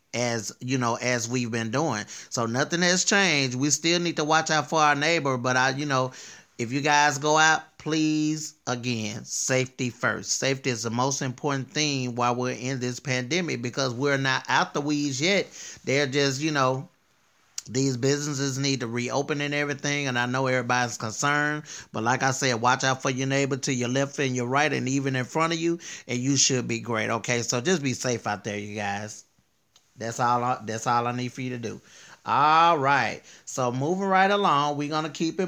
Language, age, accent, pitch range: English, 30-49, American, 125-145 Hz